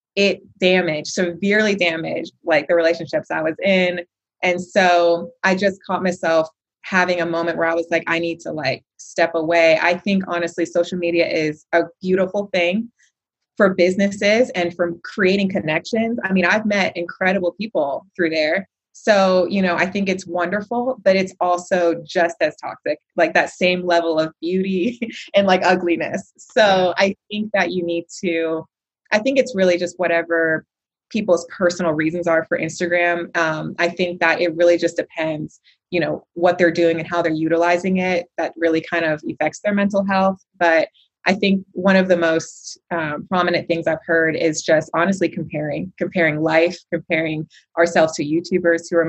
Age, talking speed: 20-39, 175 wpm